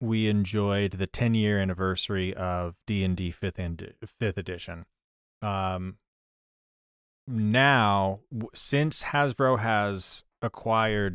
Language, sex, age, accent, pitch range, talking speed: English, male, 30-49, American, 95-120 Hz, 110 wpm